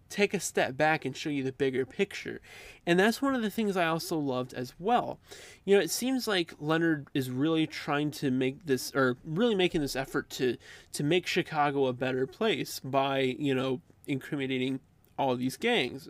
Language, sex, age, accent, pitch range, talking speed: English, male, 20-39, American, 135-180 Hz, 200 wpm